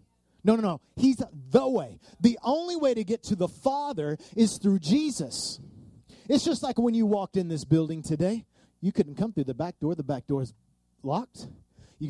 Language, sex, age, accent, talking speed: English, male, 30-49, American, 200 wpm